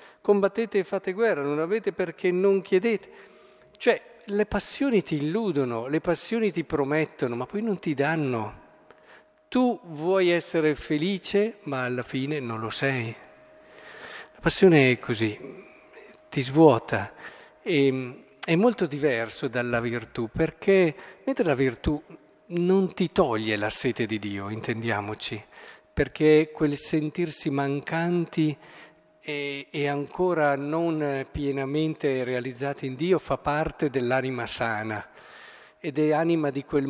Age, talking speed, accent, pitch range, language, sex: 50-69, 125 wpm, native, 135-180 Hz, Italian, male